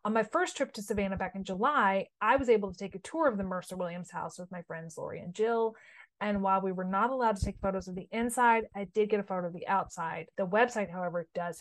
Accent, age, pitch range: American, 30-49, 190-230 Hz